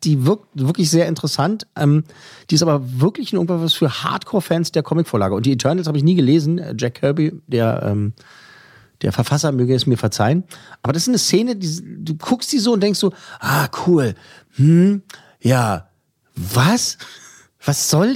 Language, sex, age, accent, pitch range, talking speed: German, male, 40-59, German, 125-175 Hz, 175 wpm